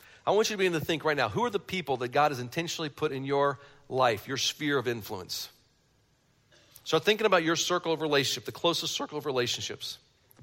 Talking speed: 220 wpm